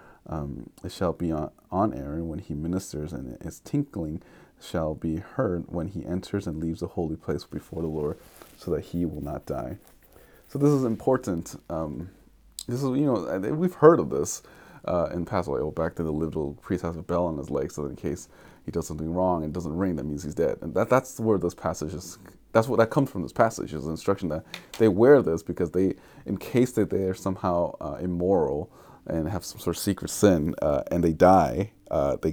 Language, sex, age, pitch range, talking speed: English, male, 30-49, 80-100 Hz, 215 wpm